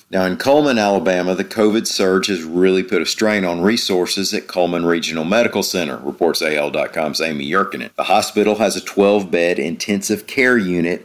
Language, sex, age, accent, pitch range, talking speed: English, male, 40-59, American, 80-100 Hz, 175 wpm